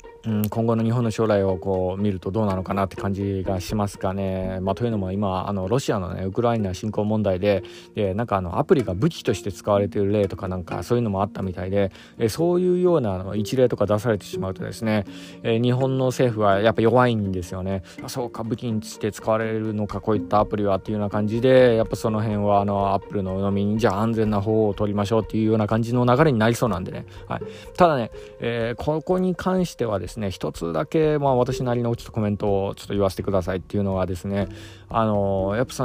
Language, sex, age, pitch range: Japanese, male, 20-39, 100-130 Hz